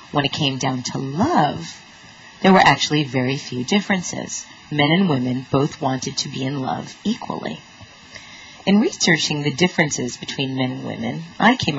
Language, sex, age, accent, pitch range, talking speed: English, female, 30-49, American, 135-185 Hz, 165 wpm